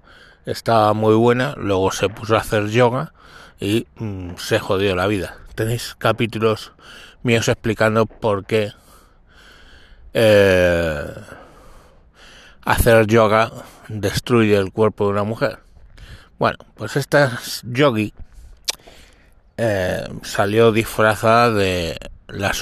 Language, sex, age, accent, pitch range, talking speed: Spanish, male, 60-79, Spanish, 100-120 Hz, 105 wpm